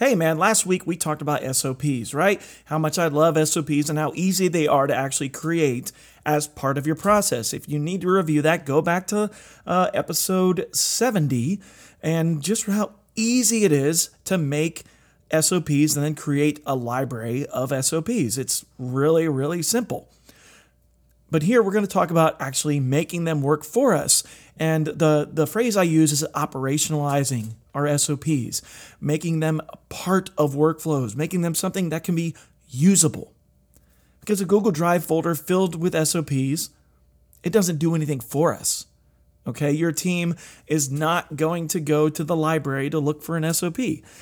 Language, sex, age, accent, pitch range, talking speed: English, male, 30-49, American, 140-175 Hz, 170 wpm